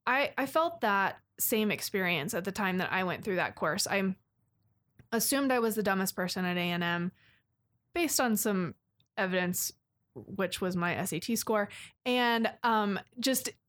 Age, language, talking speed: 20-39, English, 165 wpm